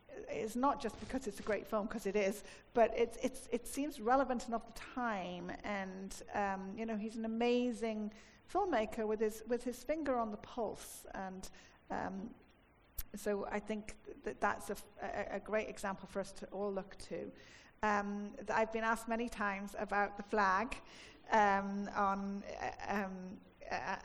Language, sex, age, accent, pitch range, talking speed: English, female, 40-59, British, 195-250 Hz, 170 wpm